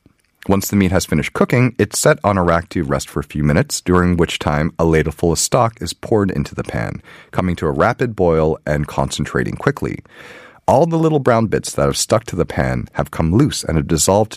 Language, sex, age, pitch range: Korean, male, 30-49, 75-110 Hz